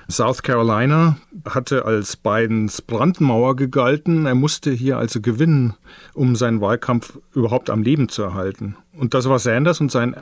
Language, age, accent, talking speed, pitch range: German, 30-49, German, 155 wpm, 115-145 Hz